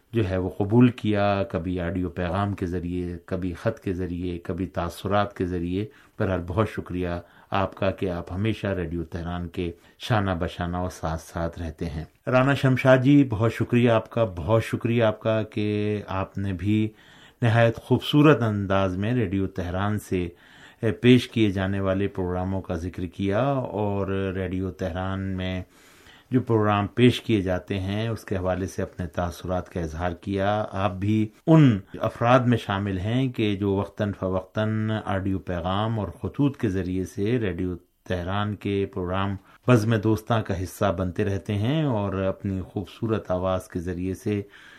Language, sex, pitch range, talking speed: Urdu, male, 90-110 Hz, 165 wpm